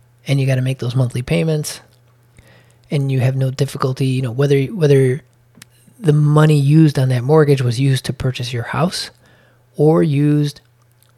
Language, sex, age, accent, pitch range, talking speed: English, male, 30-49, American, 120-140 Hz, 165 wpm